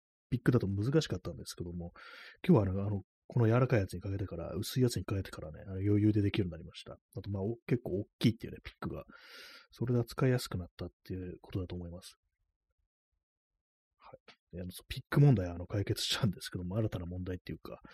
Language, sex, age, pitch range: Japanese, male, 30-49, 90-120 Hz